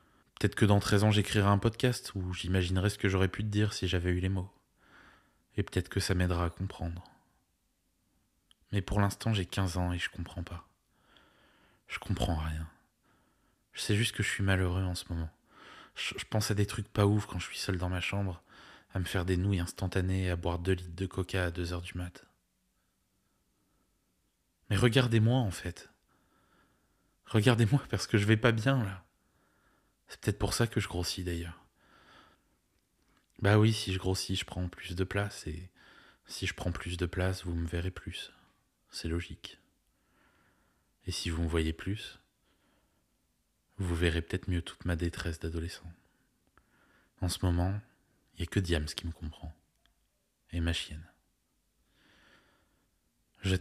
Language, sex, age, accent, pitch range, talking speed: French, male, 20-39, French, 85-100 Hz, 170 wpm